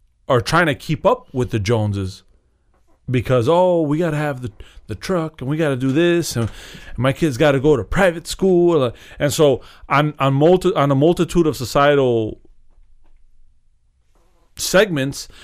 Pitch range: 110-150 Hz